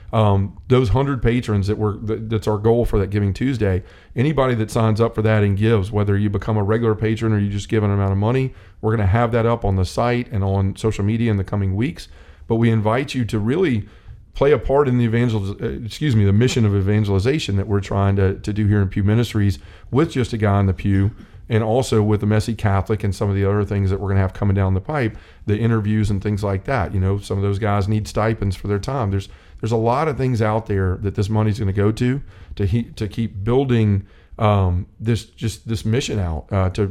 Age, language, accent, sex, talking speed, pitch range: 40-59, English, American, male, 250 wpm, 100-115 Hz